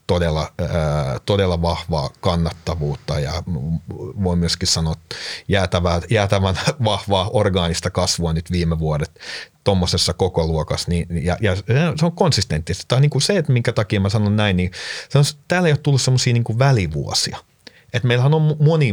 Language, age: Finnish, 30-49